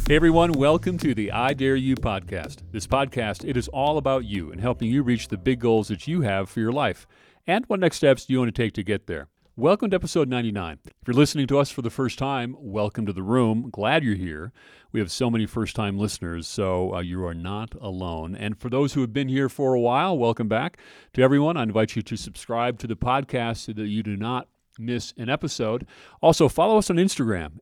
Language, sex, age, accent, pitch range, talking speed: English, male, 40-59, American, 105-135 Hz, 240 wpm